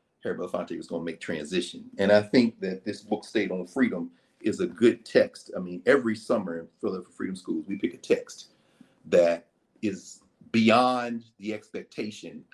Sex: male